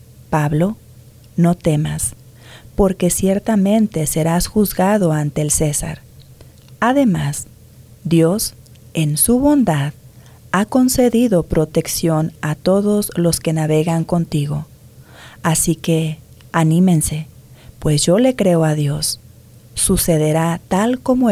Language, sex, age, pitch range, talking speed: English, female, 40-59, 130-180 Hz, 100 wpm